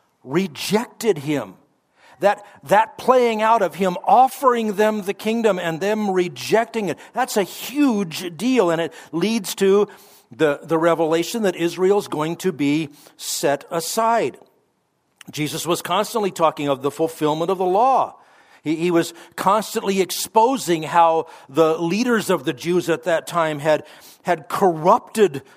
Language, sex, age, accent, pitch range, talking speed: English, male, 50-69, American, 150-200 Hz, 145 wpm